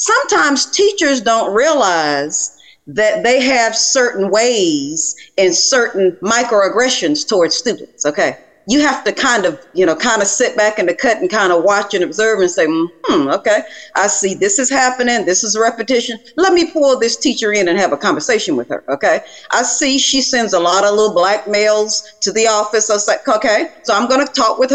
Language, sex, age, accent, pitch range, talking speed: English, female, 40-59, American, 205-275 Hz, 200 wpm